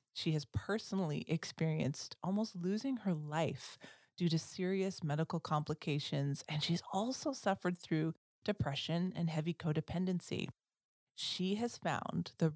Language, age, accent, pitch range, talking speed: English, 30-49, American, 150-190 Hz, 125 wpm